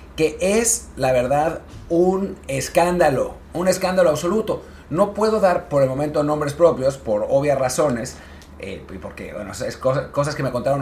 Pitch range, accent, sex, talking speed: 110-160 Hz, Mexican, male, 160 wpm